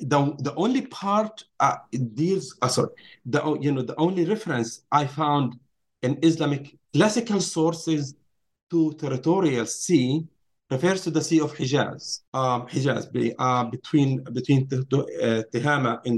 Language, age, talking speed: English, 40-59, 140 wpm